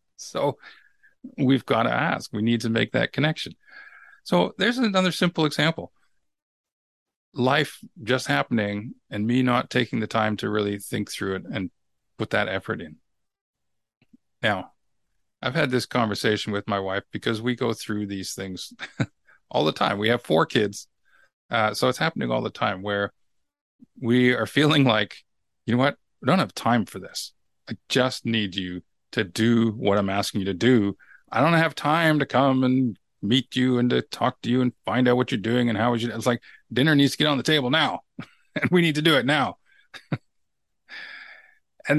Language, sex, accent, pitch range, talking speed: English, male, American, 110-150 Hz, 185 wpm